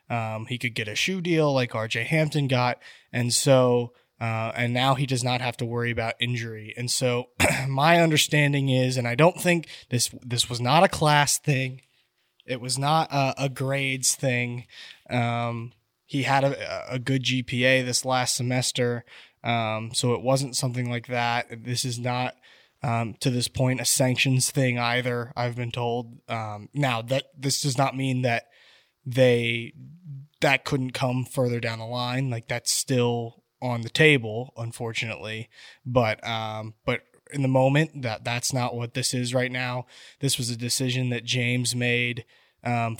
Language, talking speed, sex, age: English, 170 wpm, male, 20-39